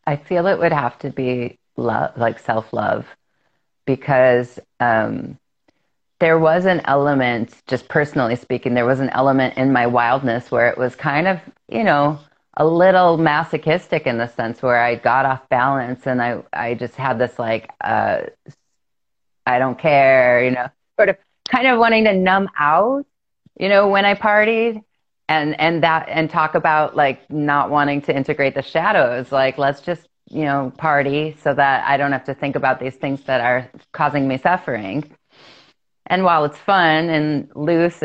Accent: American